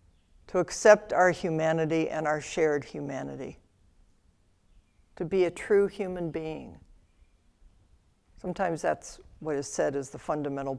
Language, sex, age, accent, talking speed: English, female, 60-79, American, 120 wpm